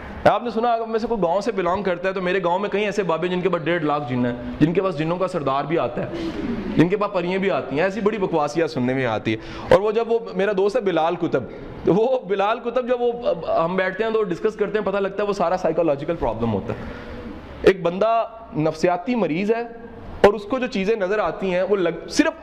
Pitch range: 150-215 Hz